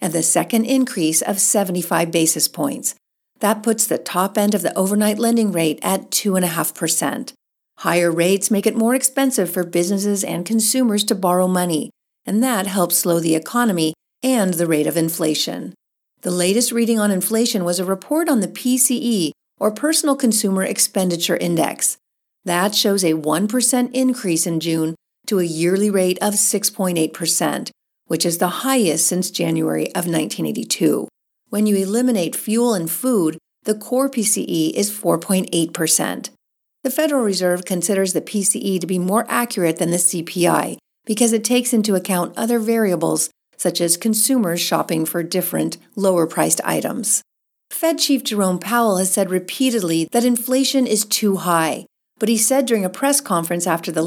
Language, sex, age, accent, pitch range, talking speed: English, female, 50-69, American, 175-230 Hz, 155 wpm